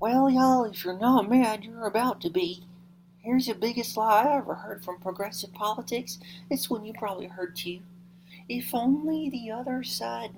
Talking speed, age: 180 wpm, 40-59